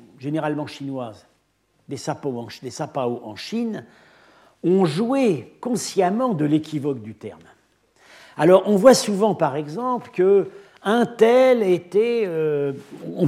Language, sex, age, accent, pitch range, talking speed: French, male, 50-69, French, 140-210 Hz, 115 wpm